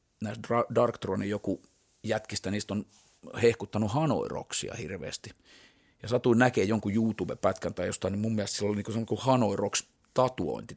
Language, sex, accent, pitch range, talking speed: Finnish, male, native, 100-120 Hz, 135 wpm